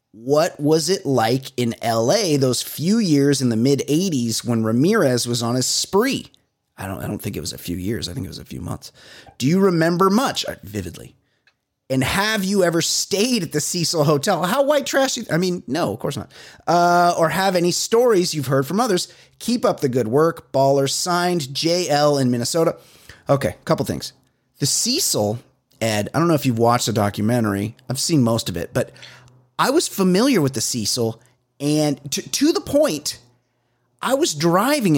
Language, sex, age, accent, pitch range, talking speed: English, male, 30-49, American, 115-175 Hz, 190 wpm